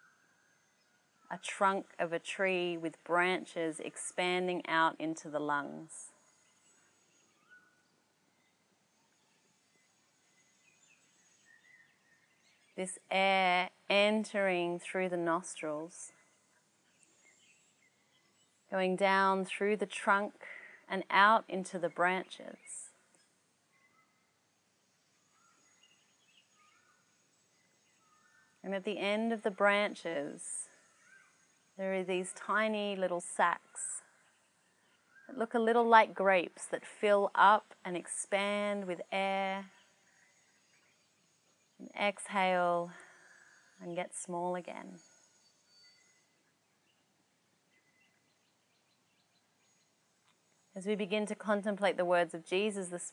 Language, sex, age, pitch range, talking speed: English, female, 30-49, 175-205 Hz, 80 wpm